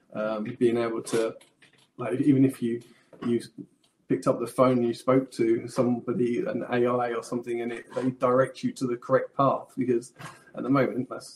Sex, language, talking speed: male, English, 190 wpm